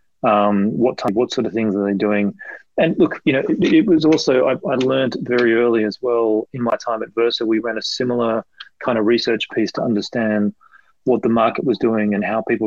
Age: 30-49